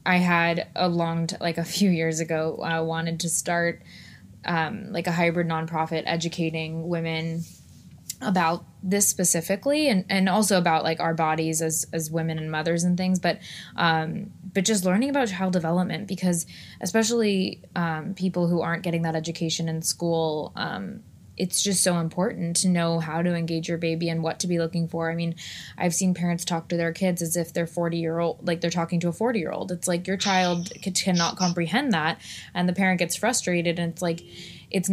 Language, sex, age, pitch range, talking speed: English, female, 20-39, 165-185 Hz, 195 wpm